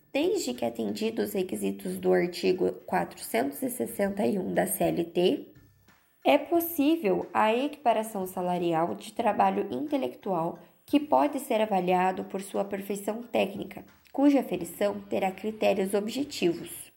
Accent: Brazilian